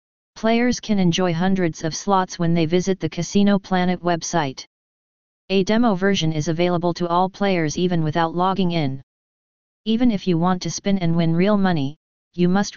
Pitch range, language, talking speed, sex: 170-200 Hz, English, 175 wpm, female